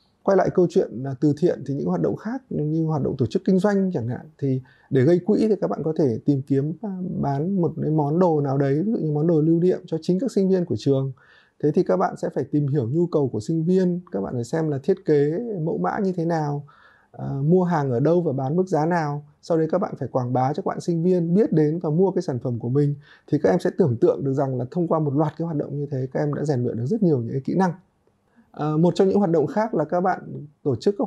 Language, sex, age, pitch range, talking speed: Vietnamese, male, 20-39, 145-180 Hz, 290 wpm